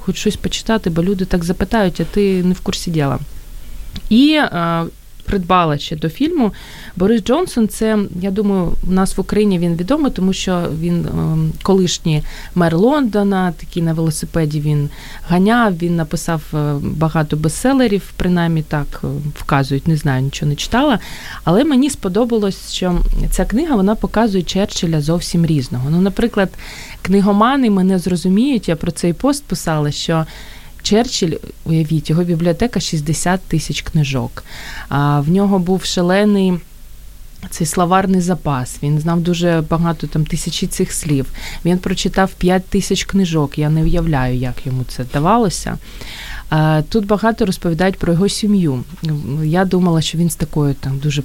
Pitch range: 155-195 Hz